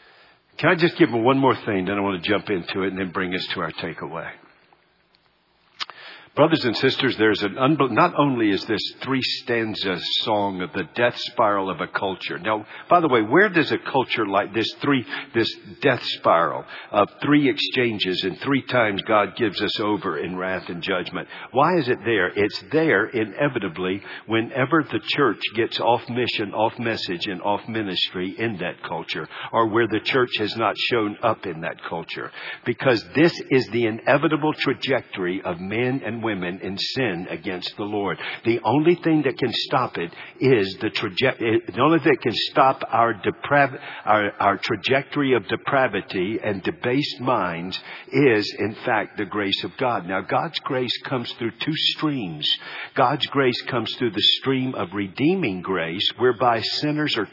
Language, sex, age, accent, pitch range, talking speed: English, male, 50-69, American, 100-140 Hz, 175 wpm